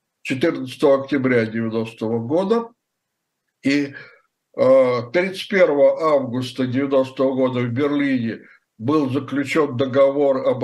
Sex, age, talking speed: male, 60-79, 85 wpm